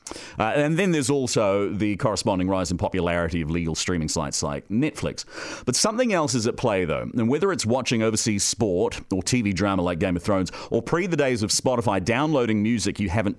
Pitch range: 95-130 Hz